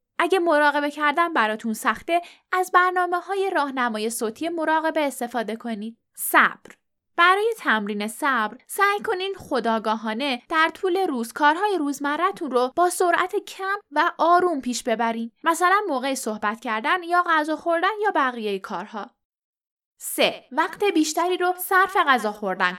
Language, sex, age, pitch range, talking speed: Persian, female, 10-29, 230-355 Hz, 130 wpm